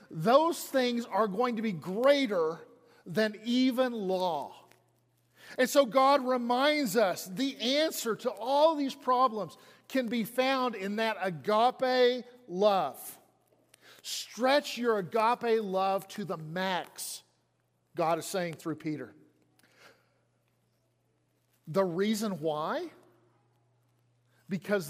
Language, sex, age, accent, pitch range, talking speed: English, male, 40-59, American, 175-250 Hz, 105 wpm